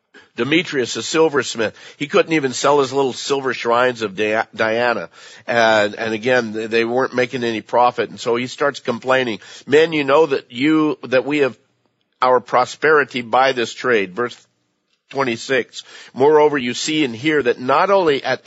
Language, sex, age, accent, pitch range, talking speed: English, male, 50-69, American, 100-125 Hz, 160 wpm